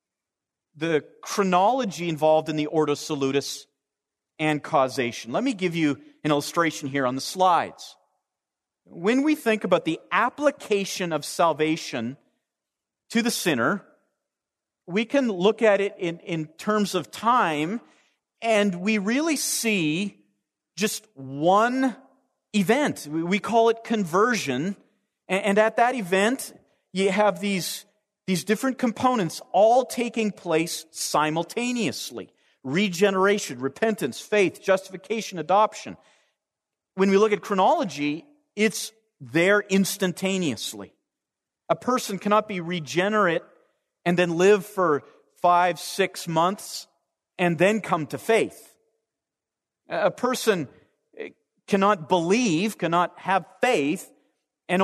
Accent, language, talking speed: American, English, 115 wpm